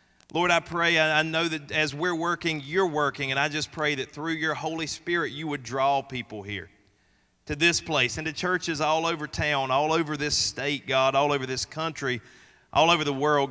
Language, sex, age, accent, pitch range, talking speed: English, male, 30-49, American, 120-150 Hz, 210 wpm